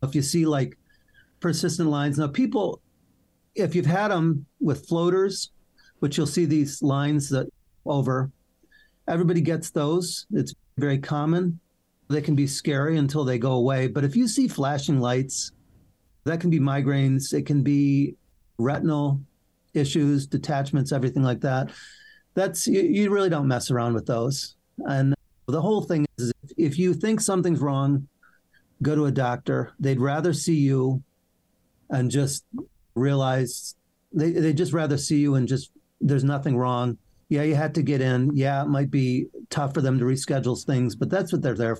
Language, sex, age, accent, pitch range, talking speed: English, male, 40-59, American, 130-160 Hz, 165 wpm